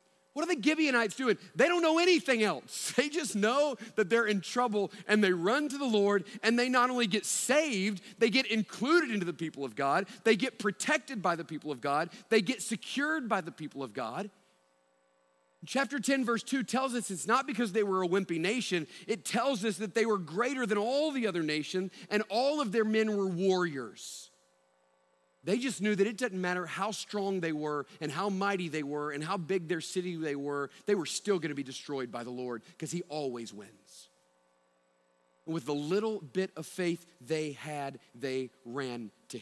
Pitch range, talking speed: 140-220 Hz, 200 wpm